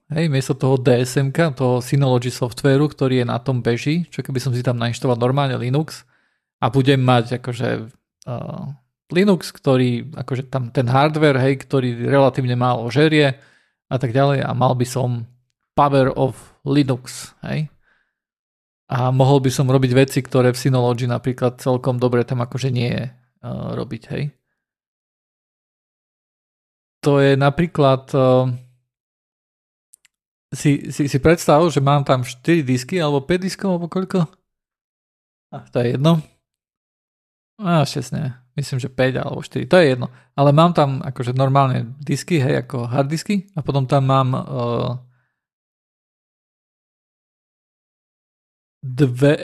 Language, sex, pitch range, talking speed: Slovak, male, 125-150 Hz, 140 wpm